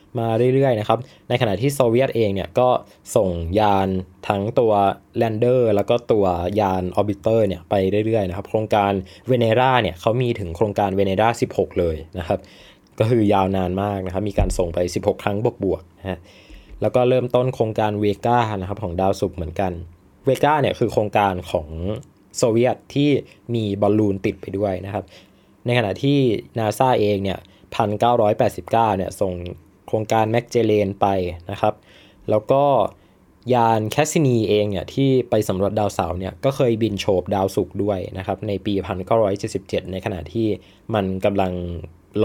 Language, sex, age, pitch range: Thai, male, 20-39, 95-115 Hz